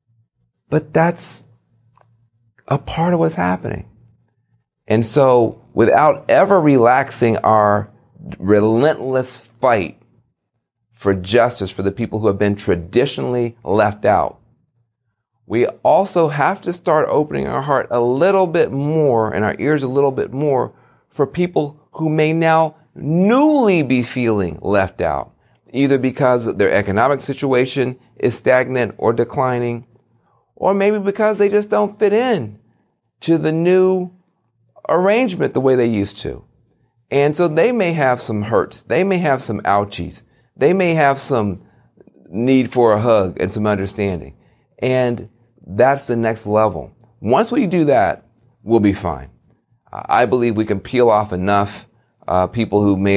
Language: English